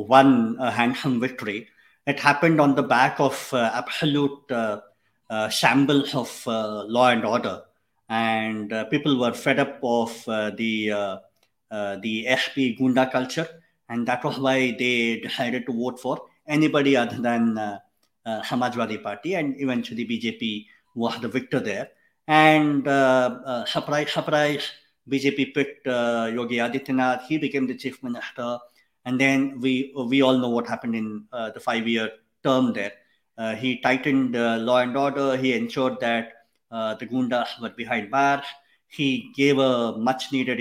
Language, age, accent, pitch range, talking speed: English, 50-69, Indian, 115-140 Hz, 160 wpm